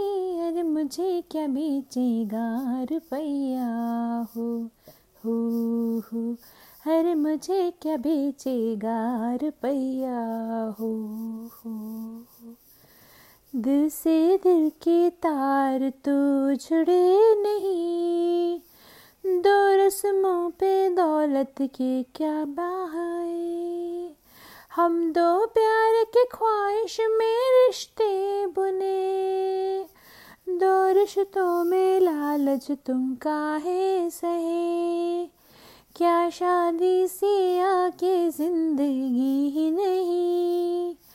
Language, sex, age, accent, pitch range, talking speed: Hindi, female, 30-49, native, 280-380 Hz, 70 wpm